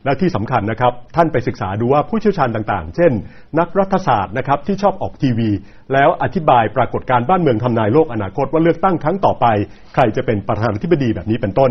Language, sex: Thai, male